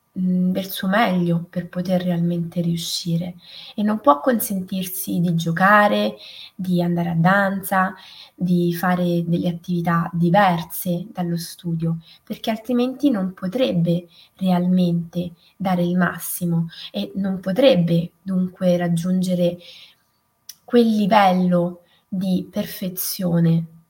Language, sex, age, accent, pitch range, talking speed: Italian, female, 20-39, native, 170-195 Hz, 100 wpm